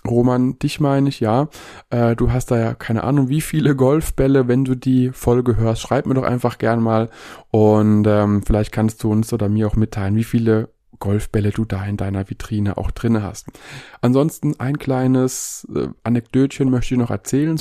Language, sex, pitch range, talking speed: German, male, 110-130 Hz, 180 wpm